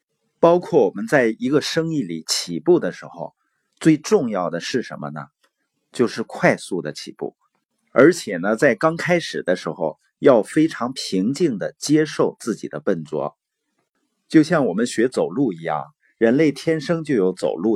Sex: male